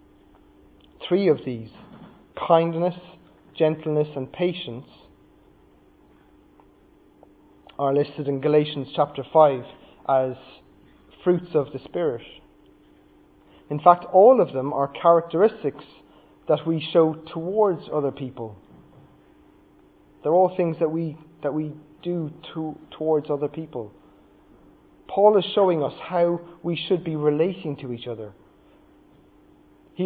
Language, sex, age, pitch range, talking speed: English, male, 30-49, 145-170 Hz, 110 wpm